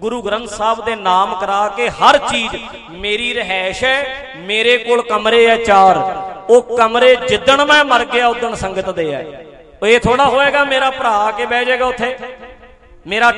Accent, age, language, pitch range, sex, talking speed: Indian, 40-59, English, 205-255 Hz, male, 150 wpm